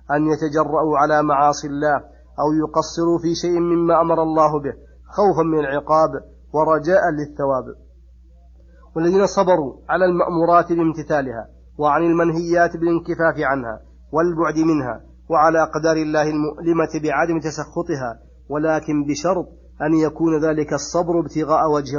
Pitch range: 150-170 Hz